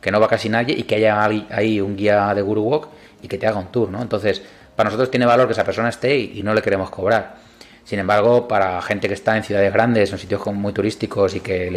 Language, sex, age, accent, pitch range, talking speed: Spanish, male, 30-49, Spanish, 100-115 Hz, 260 wpm